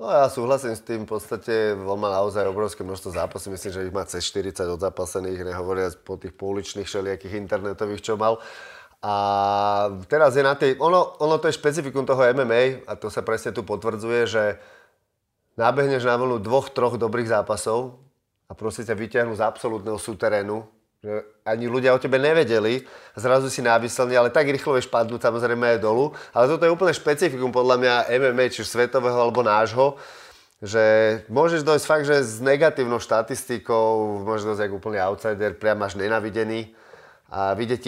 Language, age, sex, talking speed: Slovak, 30-49, male, 165 wpm